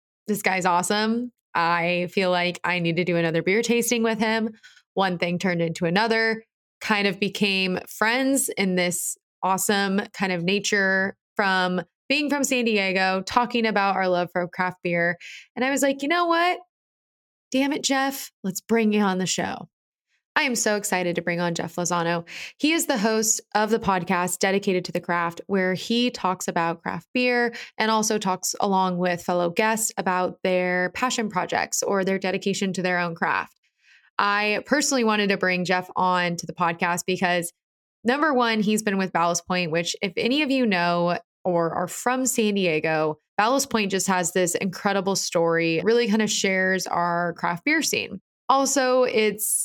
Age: 20-39